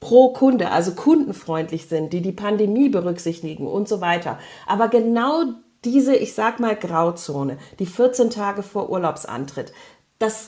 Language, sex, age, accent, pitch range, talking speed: German, female, 40-59, German, 170-235 Hz, 145 wpm